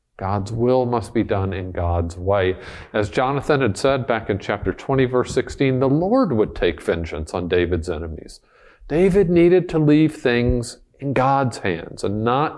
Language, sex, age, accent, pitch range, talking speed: English, male, 50-69, American, 105-170 Hz, 170 wpm